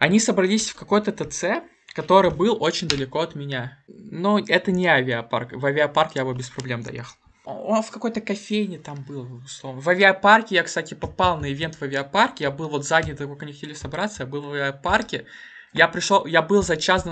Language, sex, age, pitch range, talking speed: Russian, male, 20-39, 130-180 Hz, 200 wpm